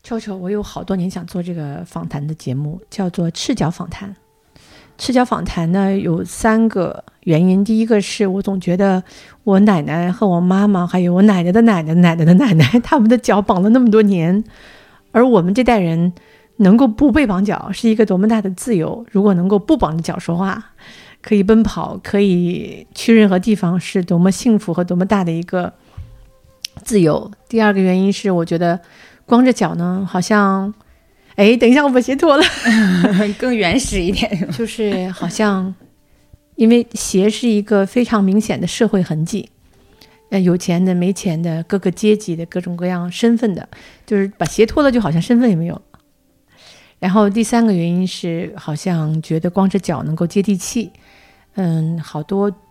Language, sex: English, female